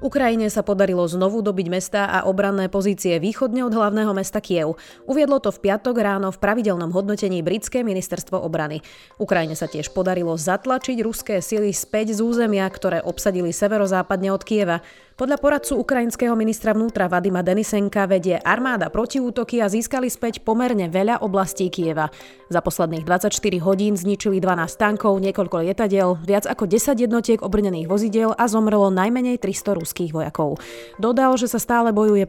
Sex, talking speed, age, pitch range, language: female, 155 wpm, 30-49, 185-225 Hz, Slovak